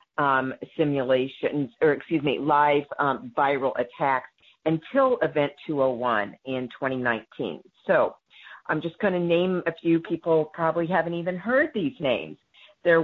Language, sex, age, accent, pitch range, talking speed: English, female, 50-69, American, 145-190 Hz, 140 wpm